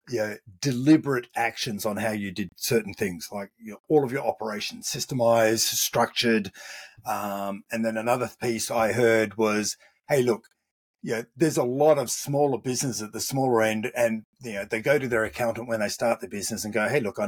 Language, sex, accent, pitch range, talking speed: English, male, Australian, 110-145 Hz, 205 wpm